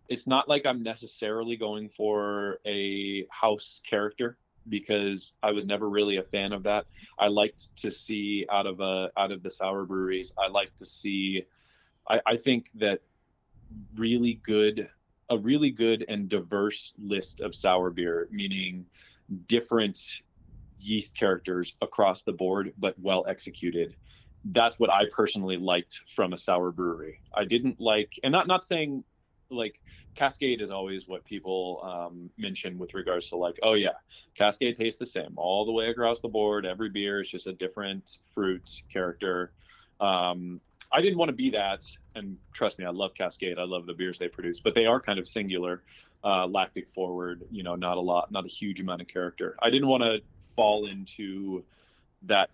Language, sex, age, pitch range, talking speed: English, male, 20-39, 90-110 Hz, 175 wpm